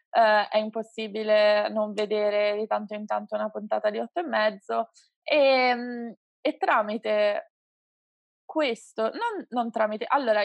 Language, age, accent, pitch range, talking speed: Italian, 20-39, native, 210-240 Hz, 125 wpm